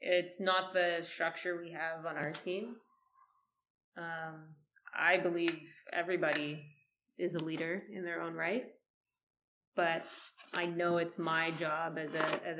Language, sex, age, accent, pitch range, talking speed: English, female, 20-39, American, 165-185 Hz, 140 wpm